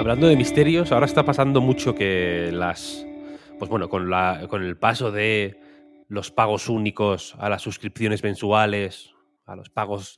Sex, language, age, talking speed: male, Spanish, 20-39, 160 wpm